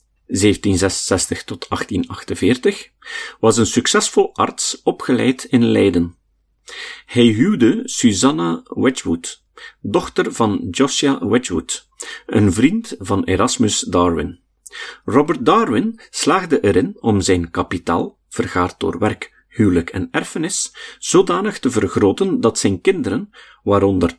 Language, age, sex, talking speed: Dutch, 40-59, male, 105 wpm